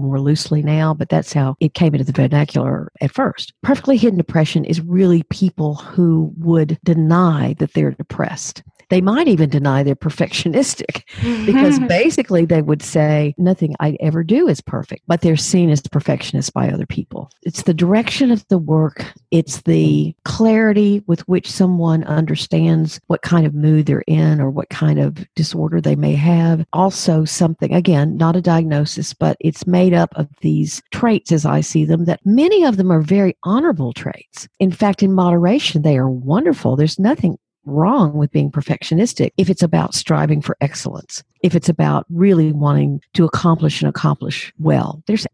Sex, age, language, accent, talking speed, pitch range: female, 50-69, English, American, 175 wpm, 150-180 Hz